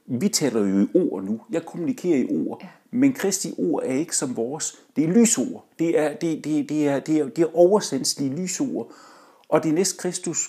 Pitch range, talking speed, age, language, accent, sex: 150-245 Hz, 205 wpm, 60-79, Danish, native, male